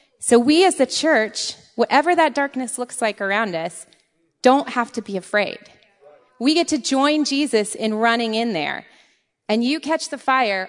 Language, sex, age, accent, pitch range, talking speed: English, female, 30-49, American, 190-255 Hz, 175 wpm